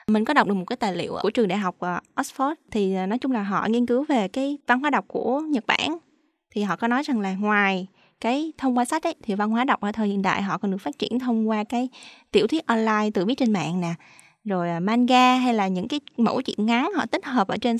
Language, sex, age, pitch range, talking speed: Vietnamese, female, 20-39, 205-255 Hz, 265 wpm